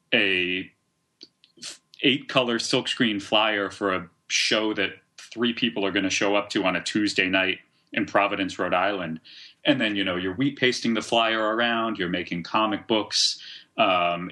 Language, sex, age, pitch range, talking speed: English, male, 30-49, 95-110 Hz, 170 wpm